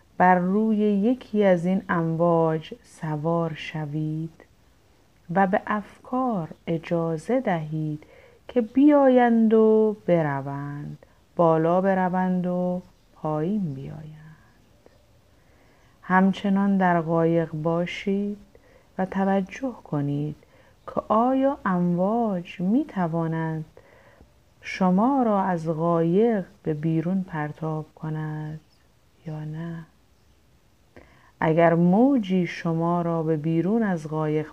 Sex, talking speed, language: female, 90 wpm, Persian